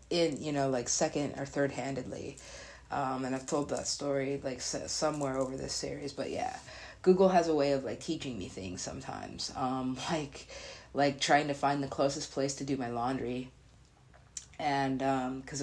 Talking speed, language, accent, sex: 180 wpm, English, American, female